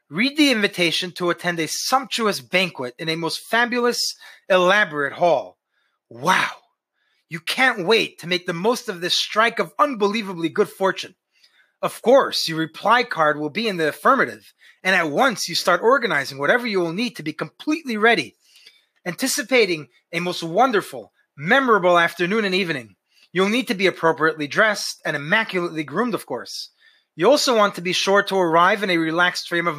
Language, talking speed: English, 175 wpm